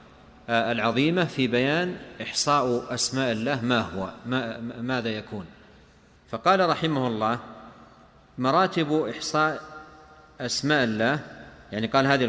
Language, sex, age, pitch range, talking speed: Arabic, male, 40-59, 115-150 Hz, 105 wpm